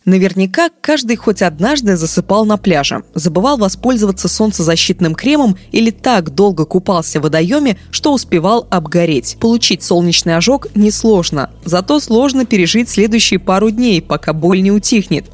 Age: 20-39